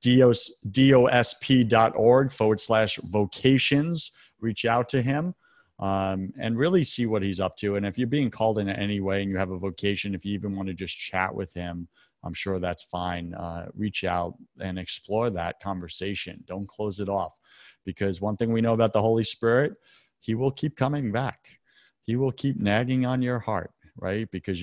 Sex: male